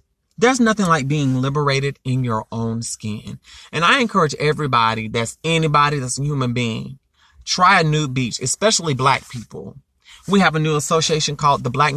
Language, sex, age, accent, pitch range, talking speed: English, male, 30-49, American, 130-160 Hz, 170 wpm